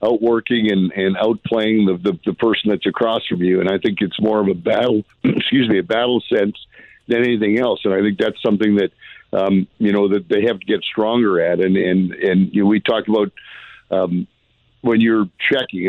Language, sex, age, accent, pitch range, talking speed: English, male, 50-69, American, 100-115 Hz, 210 wpm